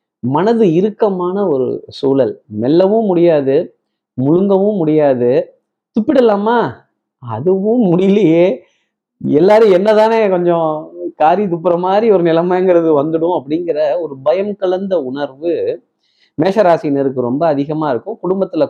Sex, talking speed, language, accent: male, 95 wpm, Tamil, native